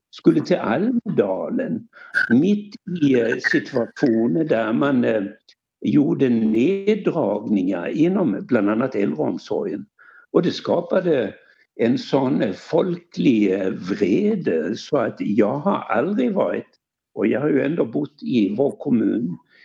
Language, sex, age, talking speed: Swedish, male, 60-79, 110 wpm